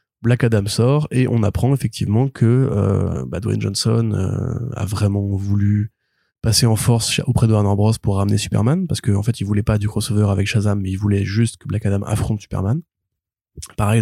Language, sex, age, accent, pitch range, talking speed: French, male, 20-39, French, 105-120 Hz, 195 wpm